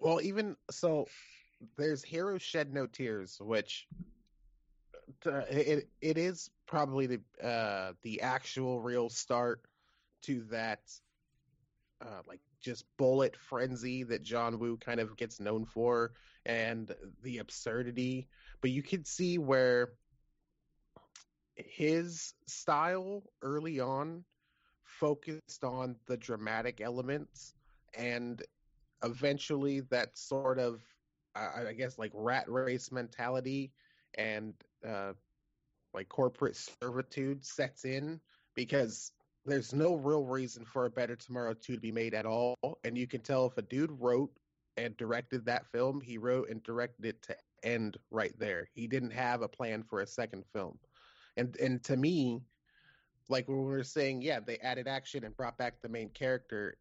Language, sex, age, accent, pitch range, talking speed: English, male, 30-49, American, 120-140 Hz, 140 wpm